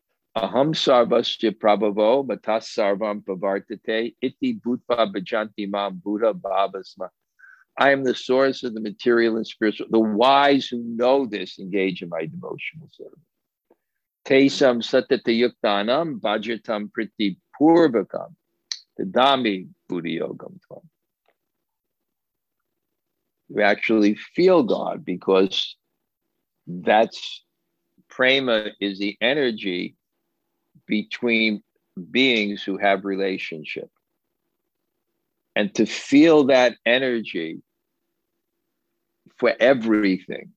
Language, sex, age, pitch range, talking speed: English, male, 50-69, 100-130 Hz, 60 wpm